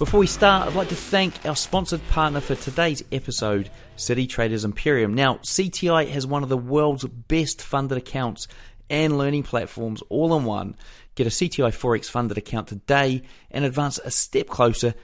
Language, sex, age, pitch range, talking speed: English, male, 30-49, 115-150 Hz, 175 wpm